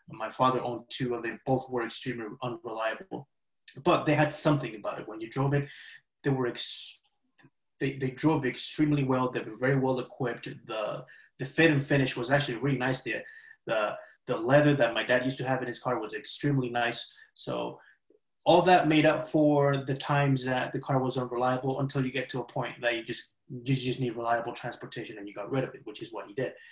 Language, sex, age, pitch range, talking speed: English, male, 20-39, 125-145 Hz, 215 wpm